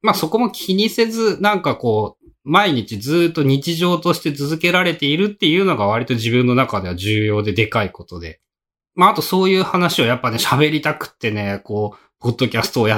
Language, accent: Japanese, native